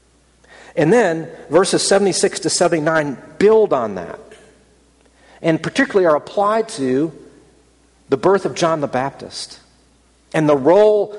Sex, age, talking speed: male, 40-59, 125 wpm